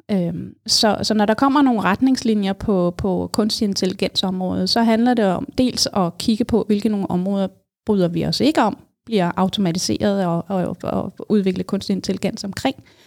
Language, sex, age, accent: Danish, female, 30-49, native